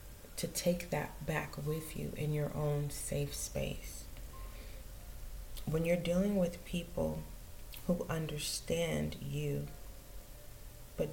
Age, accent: 30-49, American